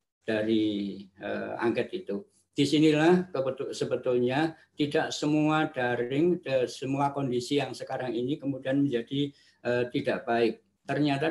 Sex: male